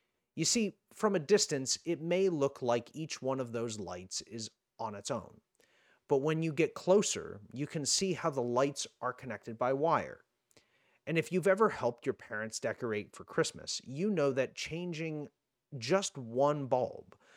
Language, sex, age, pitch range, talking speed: English, male, 30-49, 120-165 Hz, 175 wpm